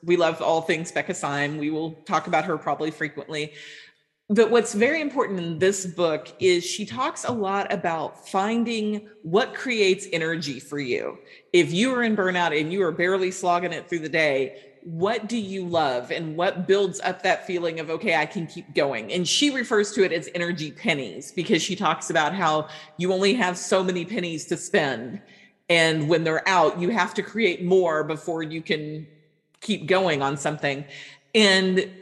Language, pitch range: English, 160-200 Hz